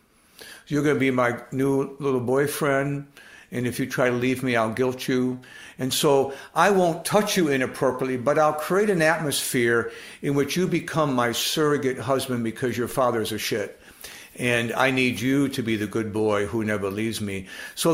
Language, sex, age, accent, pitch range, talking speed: English, male, 60-79, American, 115-145 Hz, 205 wpm